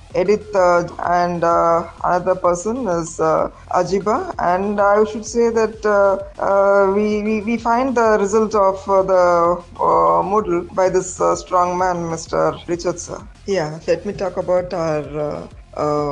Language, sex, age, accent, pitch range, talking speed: Tamil, female, 20-39, native, 170-200 Hz, 155 wpm